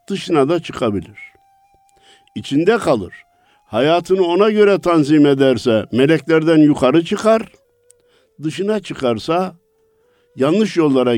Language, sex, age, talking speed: Turkish, male, 60-79, 90 wpm